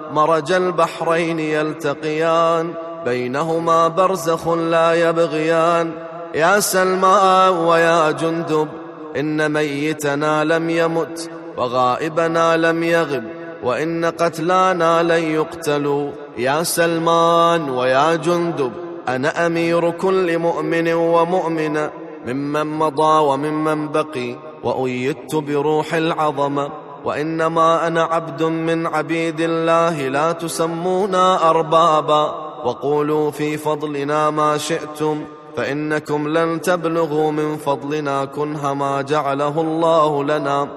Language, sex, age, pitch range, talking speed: Arabic, male, 30-49, 150-165 Hz, 90 wpm